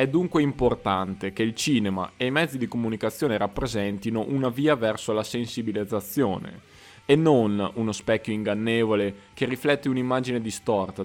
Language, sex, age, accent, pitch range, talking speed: Italian, male, 20-39, native, 95-125 Hz, 140 wpm